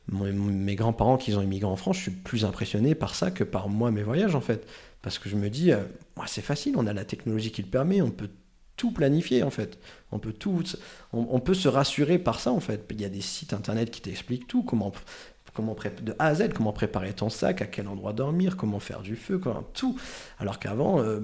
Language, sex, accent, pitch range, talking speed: French, male, French, 105-135 Hz, 250 wpm